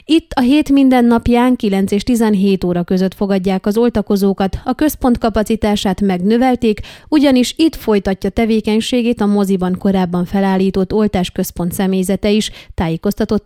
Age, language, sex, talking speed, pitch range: 30-49, Hungarian, female, 130 wpm, 195-245 Hz